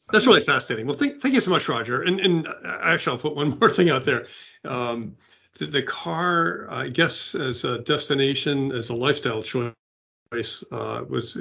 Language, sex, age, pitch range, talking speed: English, male, 50-69, 115-140 Hz, 185 wpm